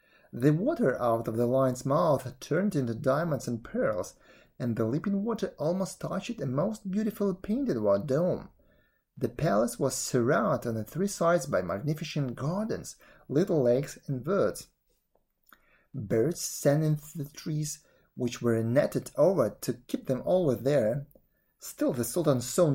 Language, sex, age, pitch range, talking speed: English, male, 30-49, 135-185 Hz, 150 wpm